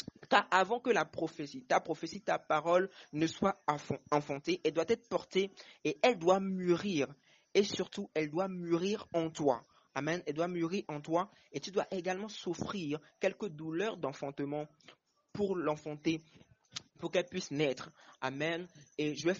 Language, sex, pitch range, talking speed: French, male, 145-175 Hz, 160 wpm